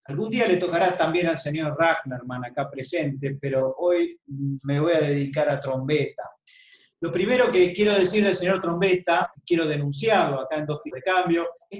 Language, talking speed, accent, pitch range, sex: Spanish, 180 wpm, Argentinian, 145-205 Hz, male